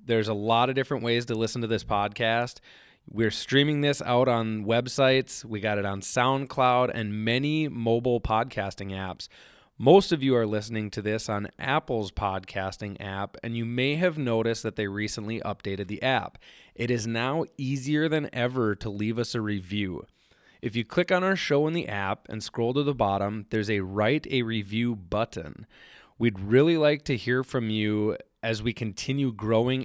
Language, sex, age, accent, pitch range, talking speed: English, male, 20-39, American, 110-135 Hz, 185 wpm